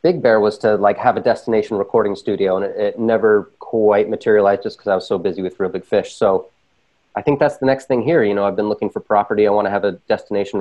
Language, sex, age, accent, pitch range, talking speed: English, male, 30-49, American, 95-110 Hz, 265 wpm